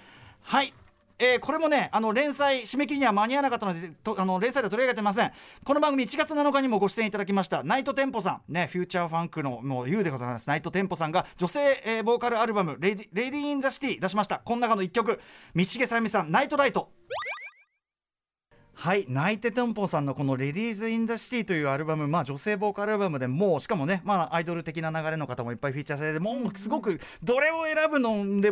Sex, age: male, 40-59